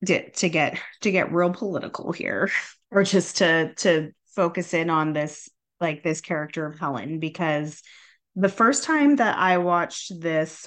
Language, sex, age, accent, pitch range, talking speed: English, female, 20-39, American, 160-195 Hz, 155 wpm